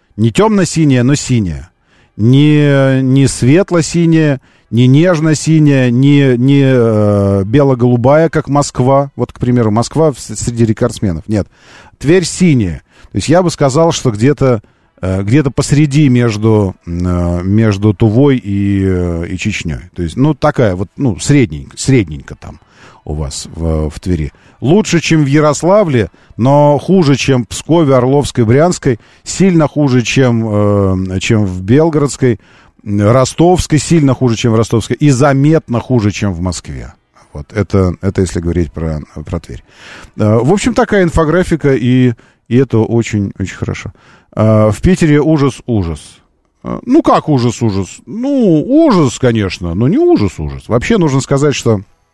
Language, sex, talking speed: Russian, male, 135 wpm